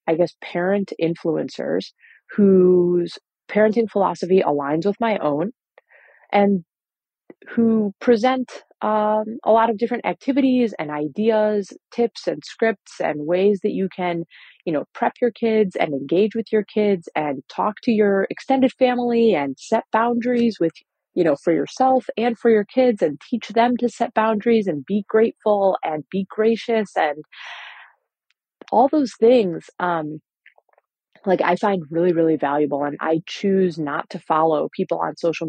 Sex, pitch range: female, 155-220 Hz